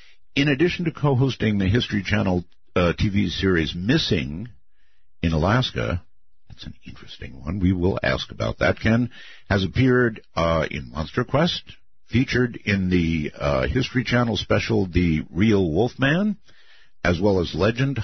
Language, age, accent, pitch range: English, 70-89, American, 90-130 Hz